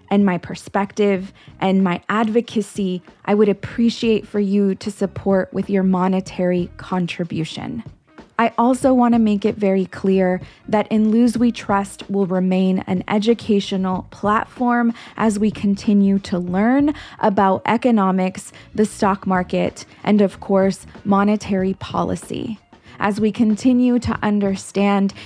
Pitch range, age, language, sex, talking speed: 185-220 Hz, 20-39, English, female, 130 wpm